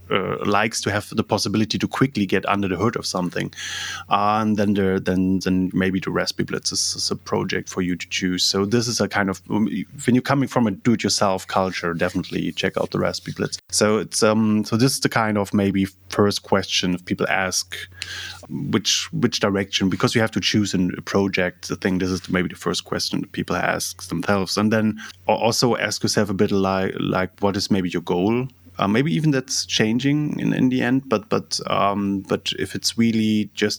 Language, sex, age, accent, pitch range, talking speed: English, male, 30-49, German, 90-105 Hz, 210 wpm